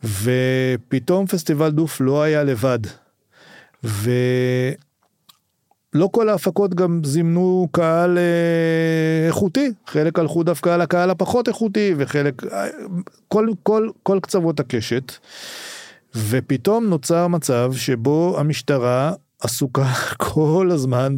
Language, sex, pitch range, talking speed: Hebrew, male, 130-175 Hz, 100 wpm